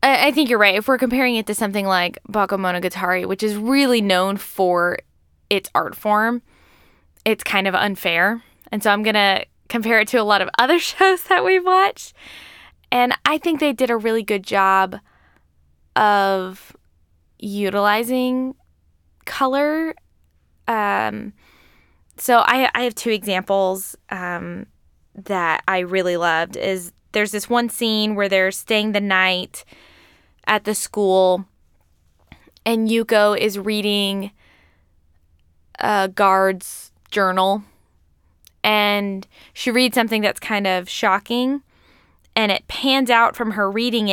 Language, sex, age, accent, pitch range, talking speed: English, female, 10-29, American, 180-230 Hz, 135 wpm